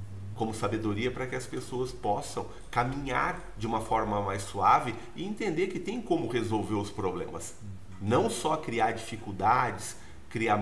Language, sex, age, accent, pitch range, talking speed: Portuguese, male, 40-59, Brazilian, 100-125 Hz, 145 wpm